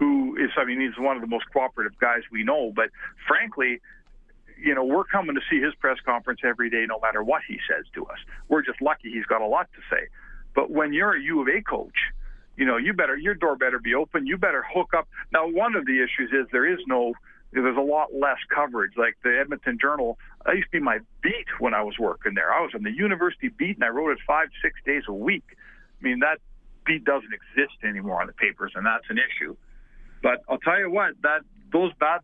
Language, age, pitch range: English, 60-79, 135-190 Hz